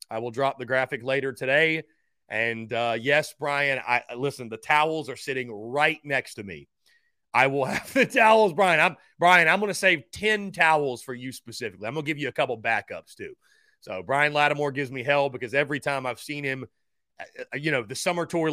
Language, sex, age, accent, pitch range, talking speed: English, male, 30-49, American, 120-165 Hz, 205 wpm